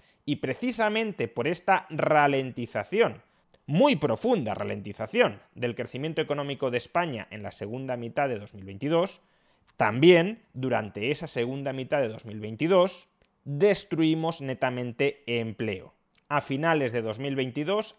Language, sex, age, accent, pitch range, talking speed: Spanish, male, 30-49, Spanish, 120-170 Hz, 110 wpm